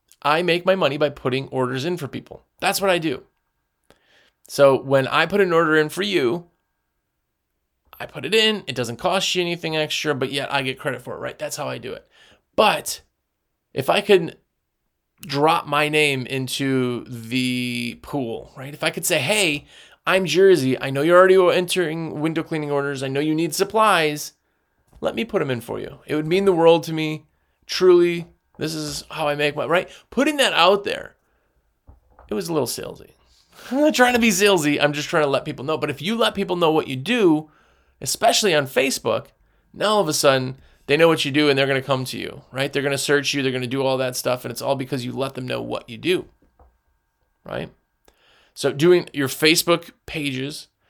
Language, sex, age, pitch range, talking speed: English, male, 30-49, 135-175 Hz, 215 wpm